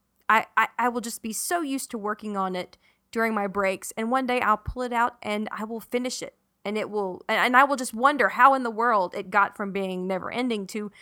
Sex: female